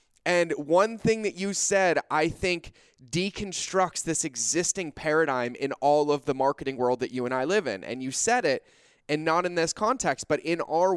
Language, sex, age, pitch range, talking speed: English, male, 20-39, 130-175 Hz, 195 wpm